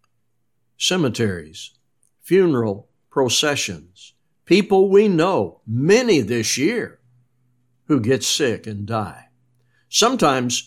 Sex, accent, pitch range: male, American, 120-155 Hz